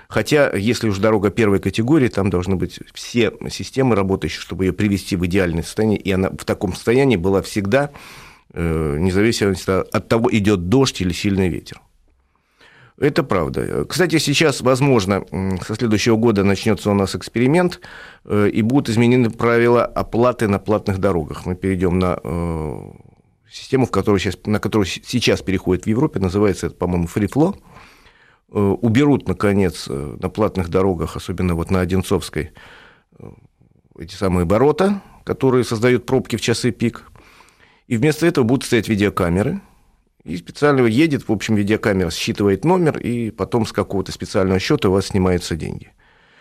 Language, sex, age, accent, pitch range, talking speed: Russian, male, 40-59, native, 95-120 Hz, 140 wpm